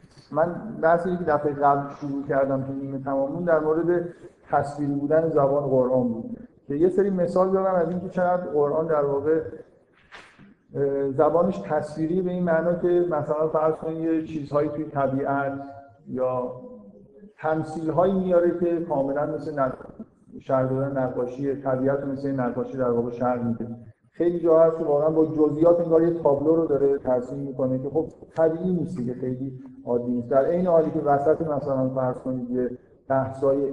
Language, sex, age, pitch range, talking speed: Persian, male, 50-69, 130-160 Hz, 150 wpm